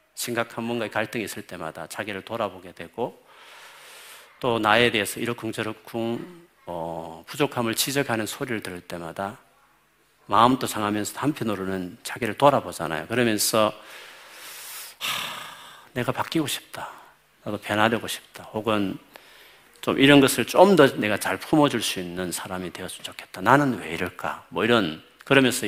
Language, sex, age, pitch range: Korean, male, 40-59, 95-120 Hz